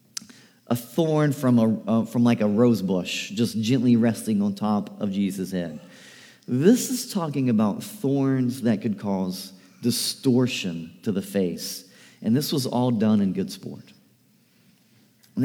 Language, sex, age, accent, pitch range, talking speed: English, male, 40-59, American, 105-165 Hz, 150 wpm